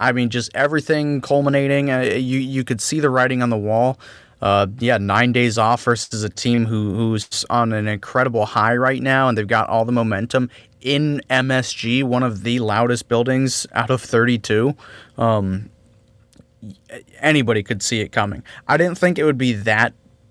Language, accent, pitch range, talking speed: English, American, 110-130 Hz, 180 wpm